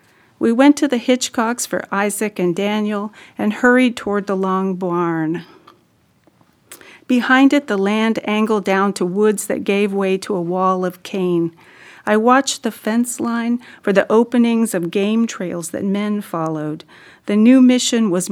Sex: female